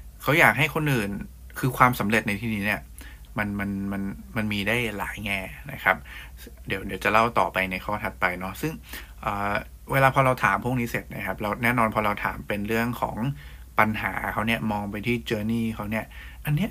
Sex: male